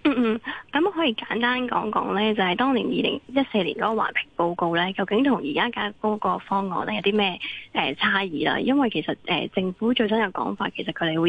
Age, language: 20-39, Chinese